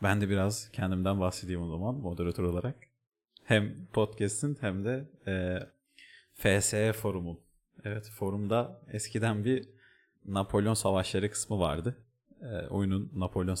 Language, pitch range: Turkish, 100-140 Hz